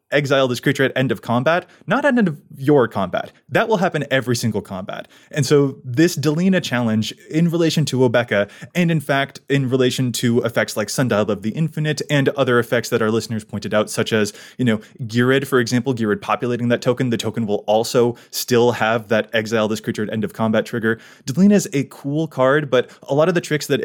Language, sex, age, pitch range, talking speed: English, male, 20-39, 115-150 Hz, 215 wpm